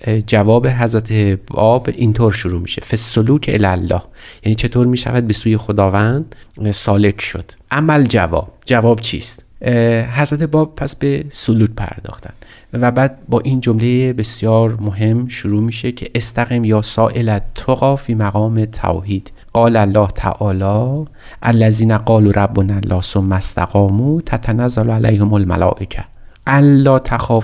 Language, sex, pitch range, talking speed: Persian, male, 100-120 Hz, 130 wpm